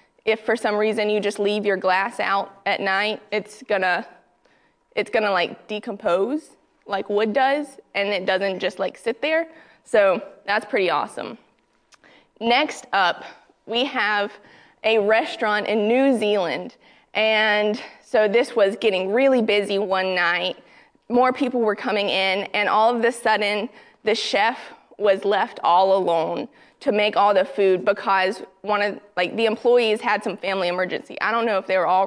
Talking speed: 165 wpm